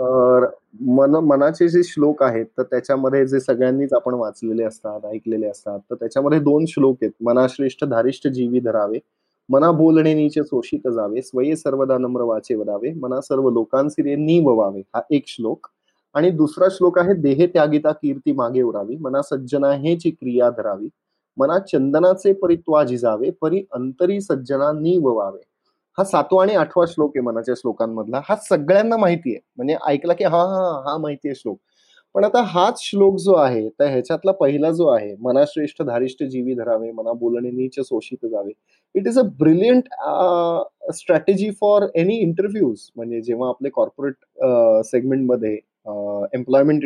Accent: native